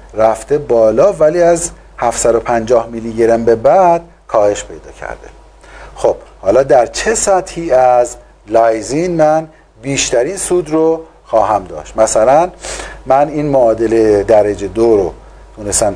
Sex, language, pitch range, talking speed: male, Persian, 120-165 Hz, 125 wpm